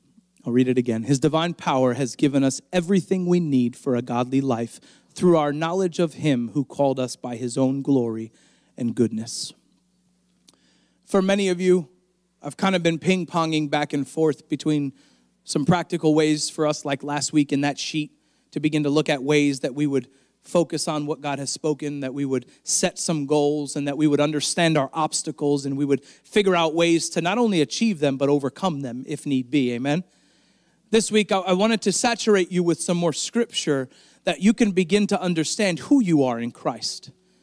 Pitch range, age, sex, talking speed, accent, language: 145-205 Hz, 30-49, male, 200 wpm, American, English